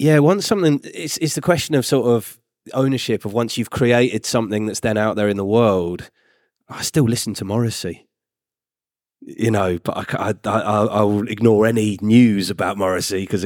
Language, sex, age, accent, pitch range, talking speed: English, male, 30-49, British, 100-140 Hz, 165 wpm